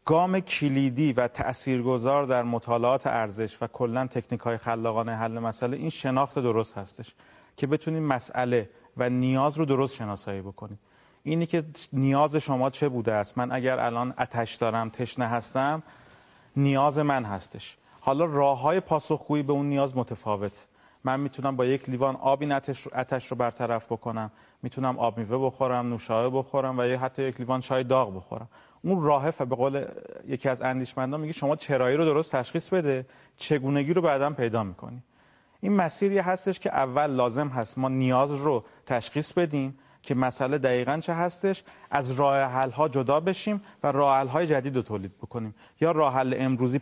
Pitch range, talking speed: 120-145 Hz, 160 wpm